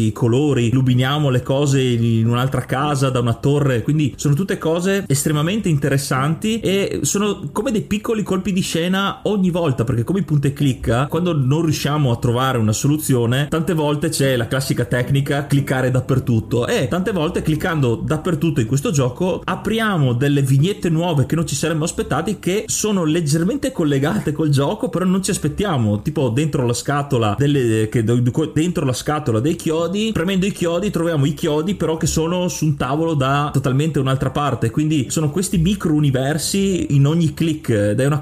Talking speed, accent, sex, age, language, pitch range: 175 wpm, native, male, 30-49, Italian, 130-165 Hz